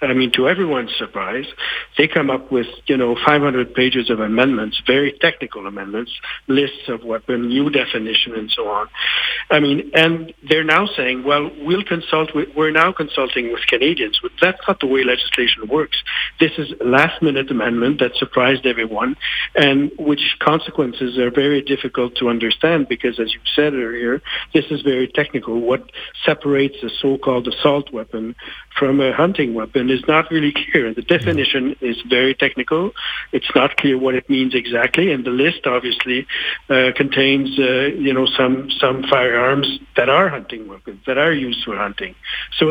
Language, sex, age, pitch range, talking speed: English, male, 60-79, 125-155 Hz, 170 wpm